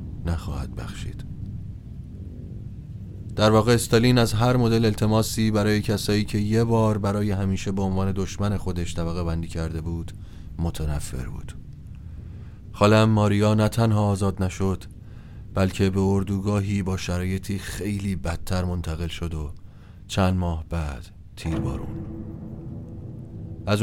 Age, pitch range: 30-49, 95-110 Hz